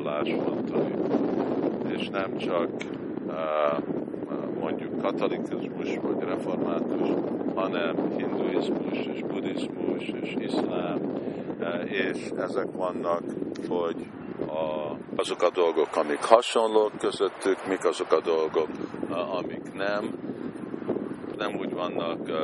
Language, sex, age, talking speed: Hungarian, male, 50-69, 90 wpm